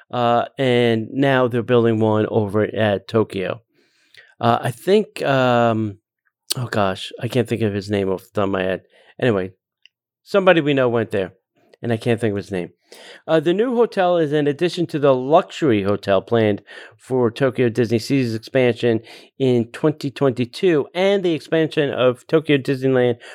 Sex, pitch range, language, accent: male, 115-160 Hz, English, American